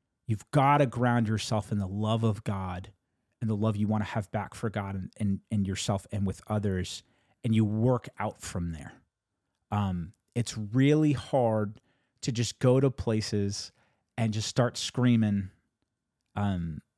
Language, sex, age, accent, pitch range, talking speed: English, male, 30-49, American, 100-130 Hz, 165 wpm